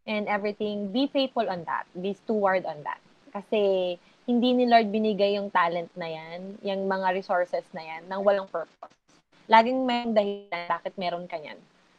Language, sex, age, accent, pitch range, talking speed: Filipino, female, 20-39, native, 185-235 Hz, 175 wpm